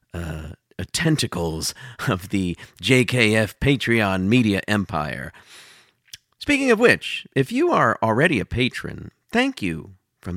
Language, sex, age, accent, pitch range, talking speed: English, male, 40-59, American, 90-125 Hz, 115 wpm